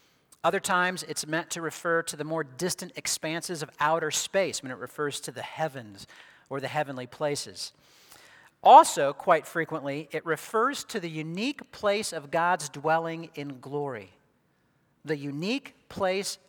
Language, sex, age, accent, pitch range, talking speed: English, male, 40-59, American, 145-175 Hz, 150 wpm